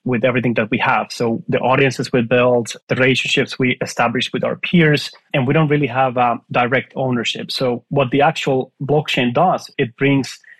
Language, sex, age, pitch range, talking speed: English, male, 30-49, 120-140 Hz, 185 wpm